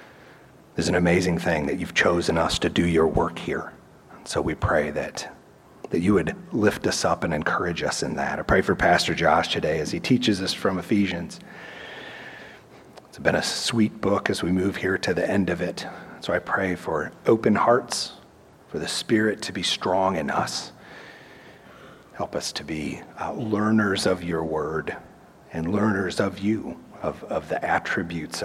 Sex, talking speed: male, 180 wpm